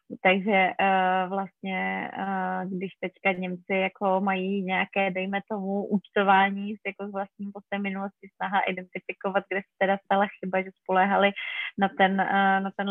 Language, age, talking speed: Czech, 20-39, 150 wpm